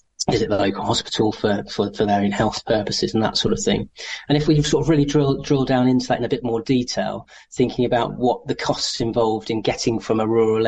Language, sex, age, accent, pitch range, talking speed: English, male, 30-49, British, 110-125 Hz, 245 wpm